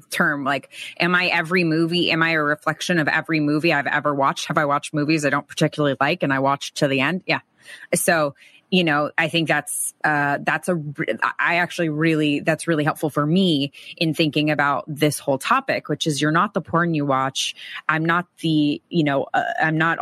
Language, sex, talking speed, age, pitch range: English, female, 210 wpm, 20-39, 145-170 Hz